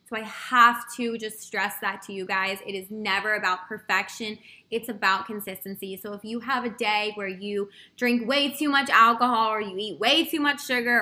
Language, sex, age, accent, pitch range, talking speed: English, female, 20-39, American, 200-250 Hz, 205 wpm